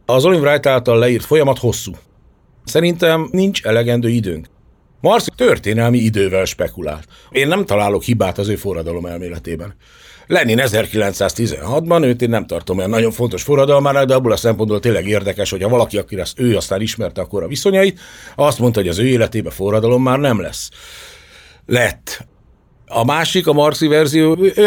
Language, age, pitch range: Hungarian, 60-79, 105-145 Hz